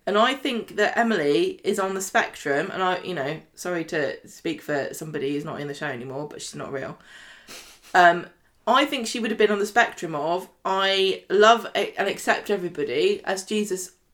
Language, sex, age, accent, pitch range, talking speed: English, female, 20-39, British, 180-250 Hz, 195 wpm